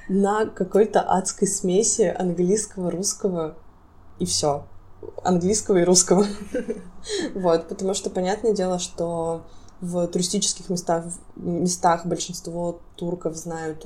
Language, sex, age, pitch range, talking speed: Russian, female, 20-39, 170-190 Hz, 95 wpm